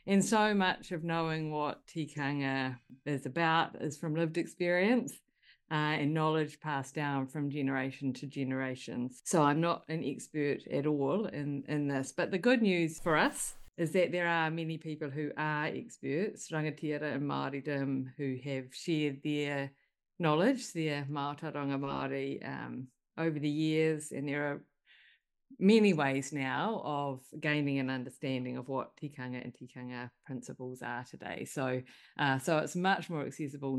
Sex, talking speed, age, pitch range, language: female, 155 wpm, 50-69, 135-170 Hz, English